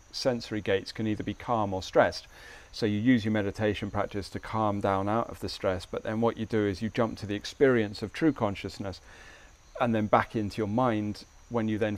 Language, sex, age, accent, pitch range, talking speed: English, male, 40-59, British, 105-135 Hz, 220 wpm